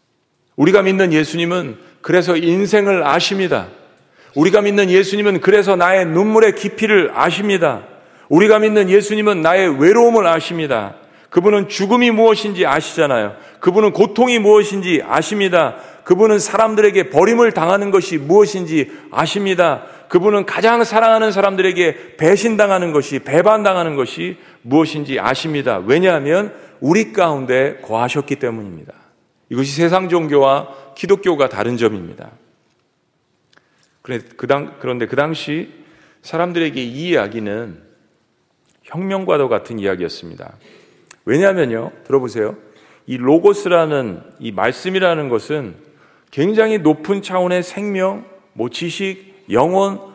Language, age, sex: Korean, 40-59, male